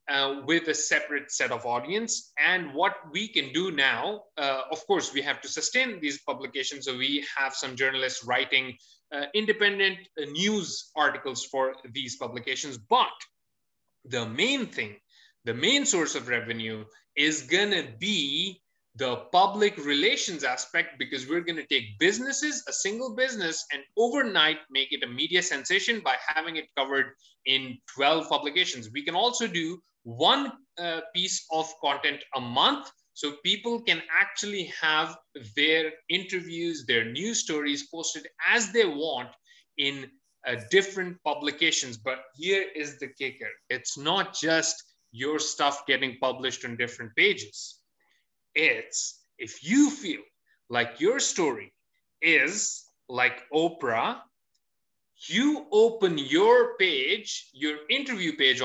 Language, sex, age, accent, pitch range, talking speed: English, male, 30-49, Indian, 135-210 Hz, 140 wpm